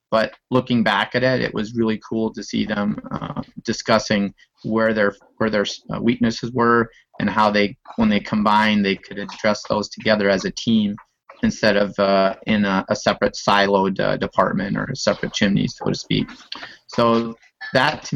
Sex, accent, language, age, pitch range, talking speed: male, American, English, 30-49, 105-120 Hz, 180 wpm